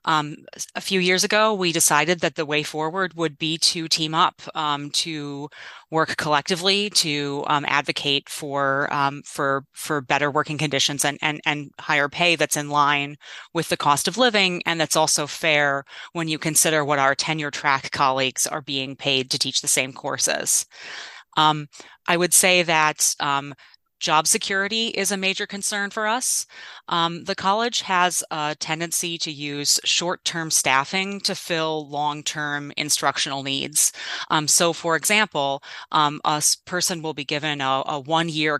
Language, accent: English, American